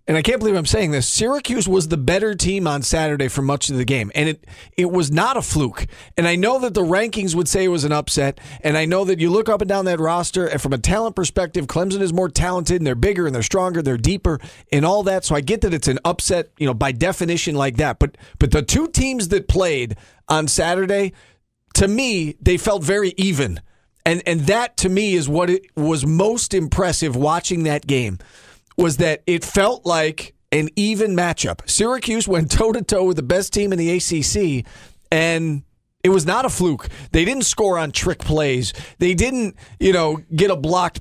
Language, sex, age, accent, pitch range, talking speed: English, male, 40-59, American, 150-190 Hz, 220 wpm